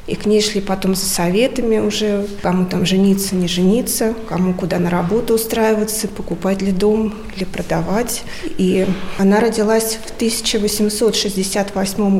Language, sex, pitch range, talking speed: Russian, female, 190-215 Hz, 140 wpm